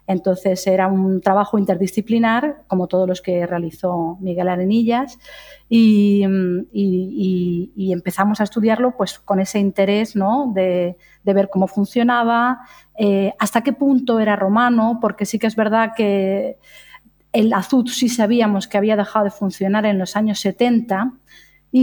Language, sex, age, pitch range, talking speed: English, female, 30-49, 195-235 Hz, 140 wpm